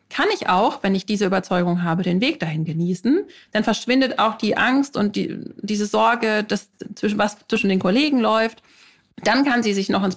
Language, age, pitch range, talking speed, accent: German, 30-49, 190-230 Hz, 185 wpm, German